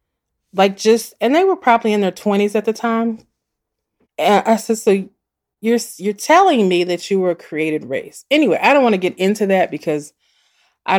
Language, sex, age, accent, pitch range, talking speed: English, female, 30-49, American, 160-220 Hz, 195 wpm